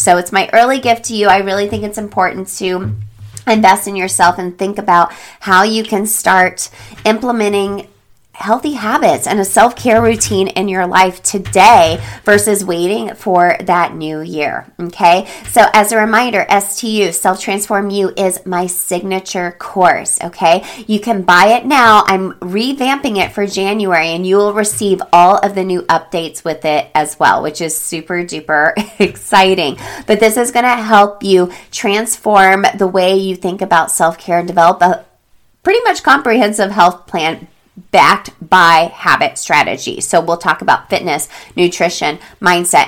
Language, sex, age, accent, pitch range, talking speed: English, female, 30-49, American, 175-215 Hz, 165 wpm